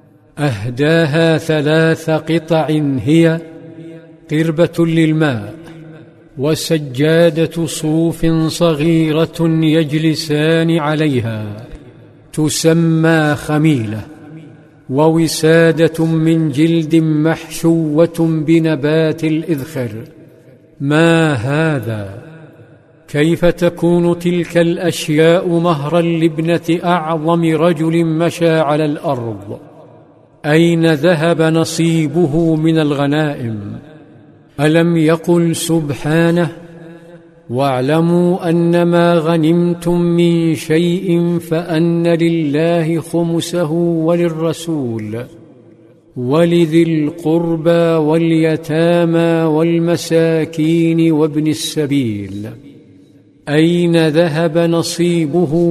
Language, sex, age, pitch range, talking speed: Arabic, male, 50-69, 155-165 Hz, 65 wpm